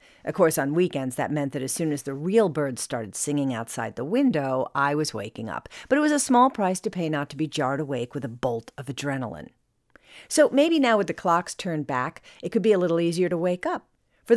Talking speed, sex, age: 240 wpm, female, 50-69